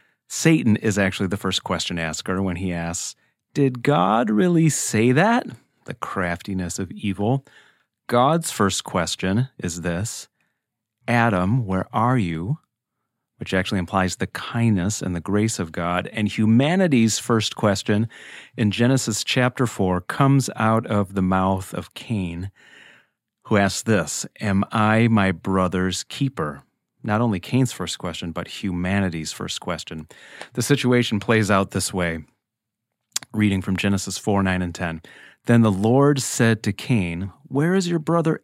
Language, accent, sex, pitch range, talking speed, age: English, American, male, 95-120 Hz, 145 wpm, 30-49